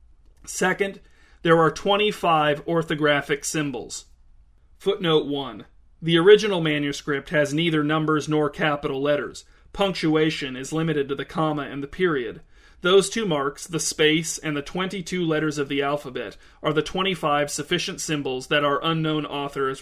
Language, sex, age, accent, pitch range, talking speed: English, male, 40-59, American, 140-170 Hz, 145 wpm